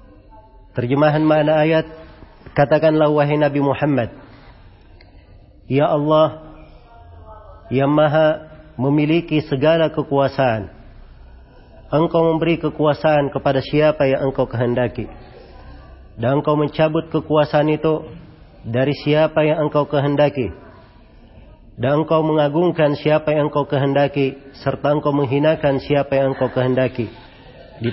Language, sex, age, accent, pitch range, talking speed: Indonesian, male, 40-59, native, 125-155 Hz, 100 wpm